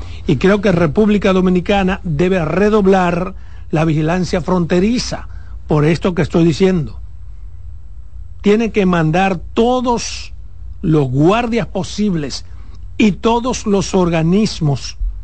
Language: Spanish